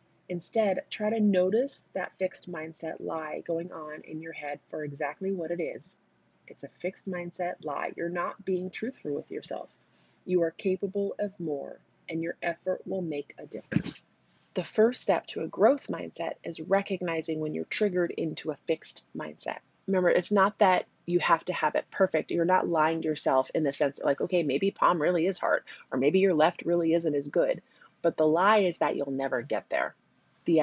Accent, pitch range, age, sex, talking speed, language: American, 155-190 Hz, 30-49, female, 200 wpm, English